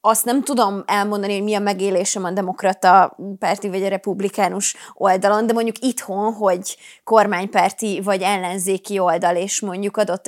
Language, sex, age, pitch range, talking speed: Hungarian, female, 20-39, 190-225 Hz, 150 wpm